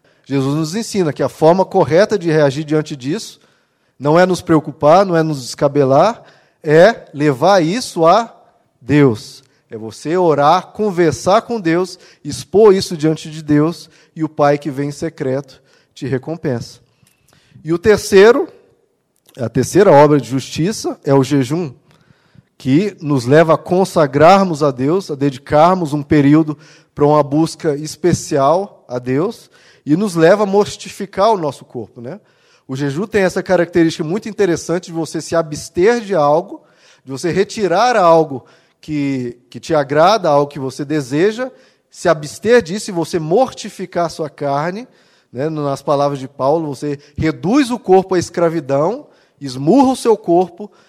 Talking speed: 150 wpm